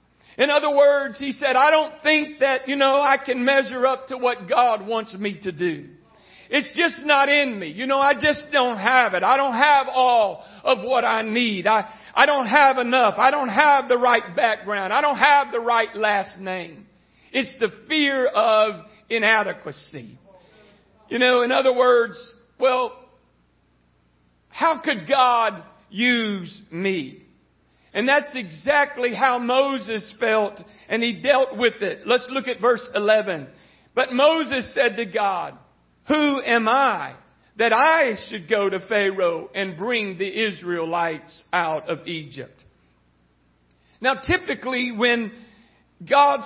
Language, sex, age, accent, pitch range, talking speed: English, male, 50-69, American, 210-275 Hz, 150 wpm